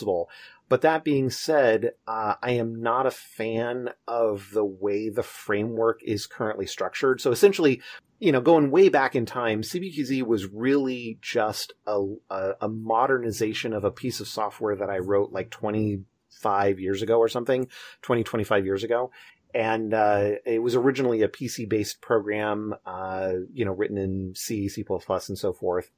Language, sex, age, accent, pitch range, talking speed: English, male, 30-49, American, 100-125 Hz, 165 wpm